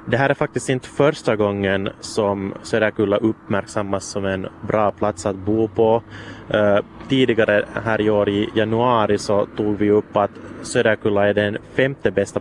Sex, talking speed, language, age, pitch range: male, 170 wpm, Swedish, 20-39, 100-110 Hz